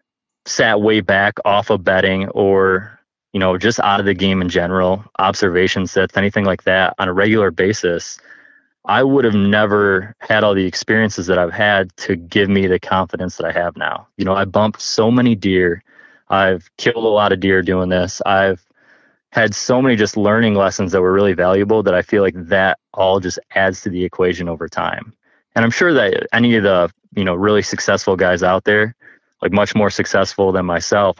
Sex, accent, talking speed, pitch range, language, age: male, American, 200 wpm, 95-105 Hz, English, 20-39